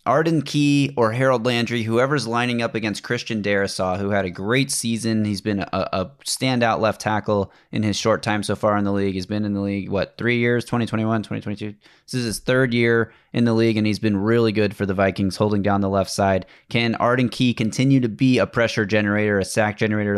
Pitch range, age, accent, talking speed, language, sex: 105-125 Hz, 20-39, American, 225 wpm, English, male